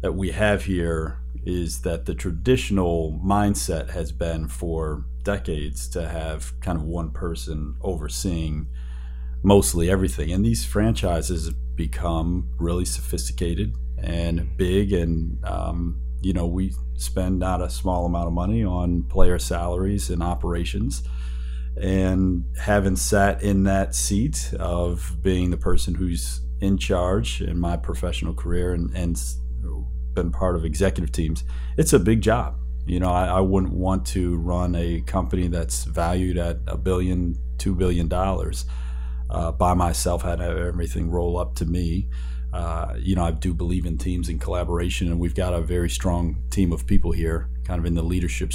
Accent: American